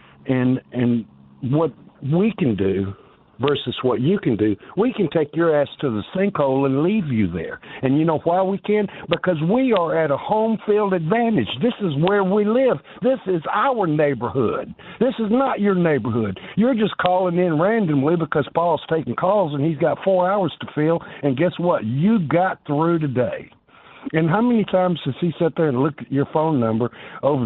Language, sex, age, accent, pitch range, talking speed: English, male, 60-79, American, 135-200 Hz, 195 wpm